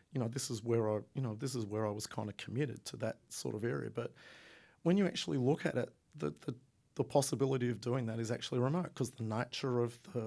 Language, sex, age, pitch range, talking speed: English, male, 40-59, 110-125 Hz, 250 wpm